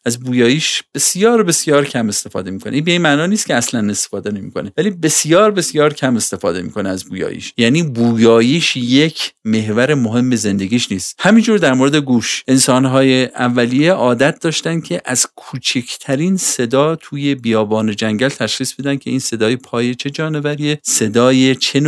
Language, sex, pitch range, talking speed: Persian, male, 115-150 Hz, 155 wpm